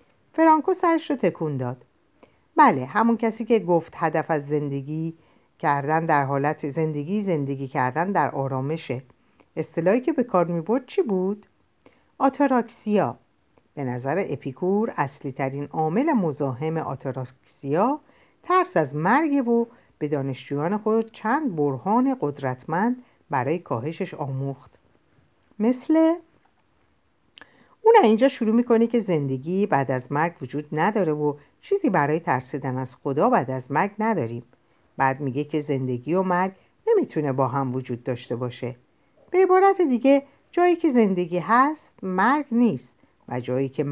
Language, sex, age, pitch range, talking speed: Persian, female, 50-69, 140-230 Hz, 130 wpm